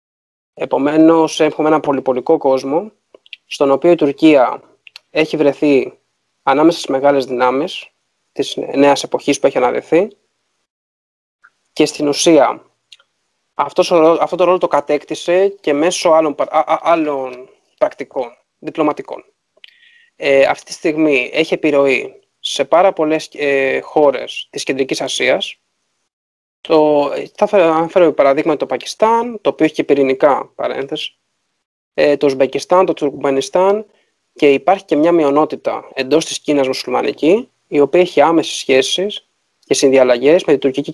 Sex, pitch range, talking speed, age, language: male, 140-175 Hz, 130 wpm, 20-39, Greek